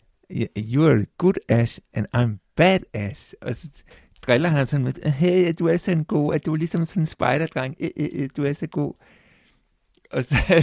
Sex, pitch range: male, 110-145 Hz